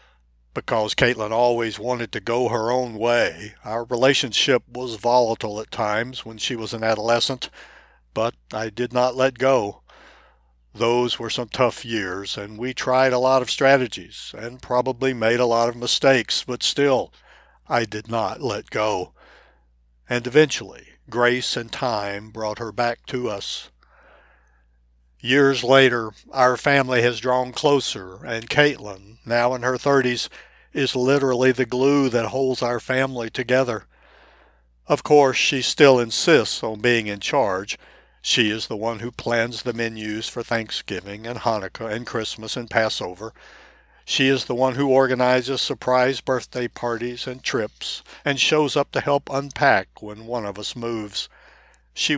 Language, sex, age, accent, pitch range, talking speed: English, male, 60-79, American, 110-130 Hz, 150 wpm